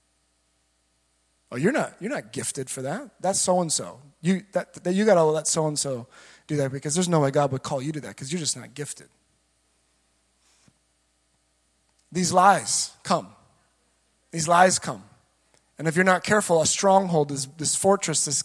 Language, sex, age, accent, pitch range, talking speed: English, male, 20-39, American, 135-175 Hz, 170 wpm